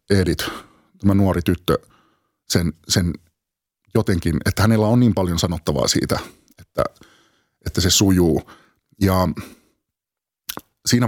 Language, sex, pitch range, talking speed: Finnish, male, 90-110 Hz, 110 wpm